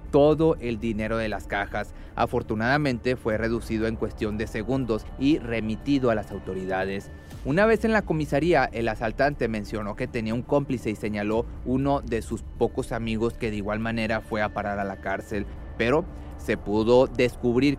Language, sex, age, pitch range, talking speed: Spanish, male, 30-49, 105-130 Hz, 170 wpm